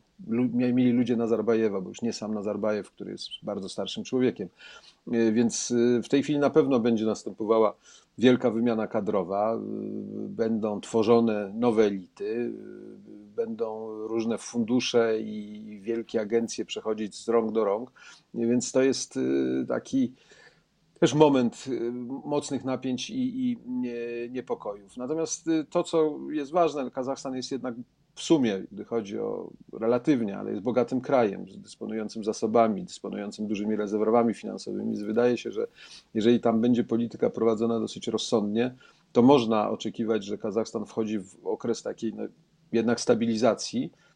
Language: Polish